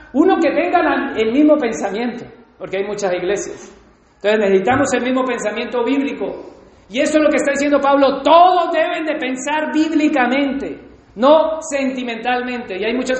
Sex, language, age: male, Spanish, 40-59